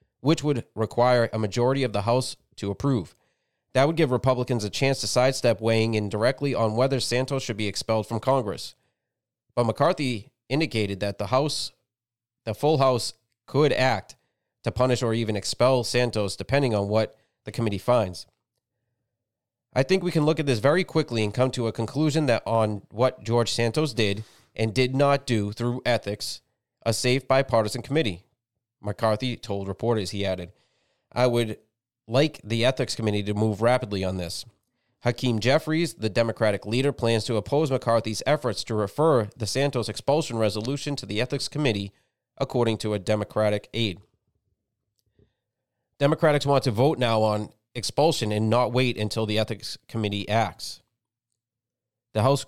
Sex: male